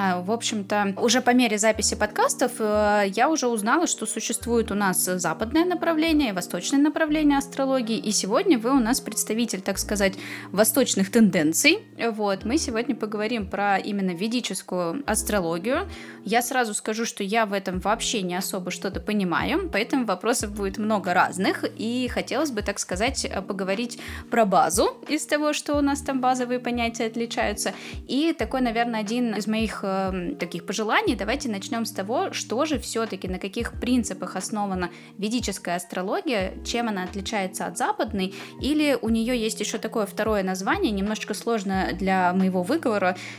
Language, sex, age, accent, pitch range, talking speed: Russian, female, 20-39, native, 200-265 Hz, 150 wpm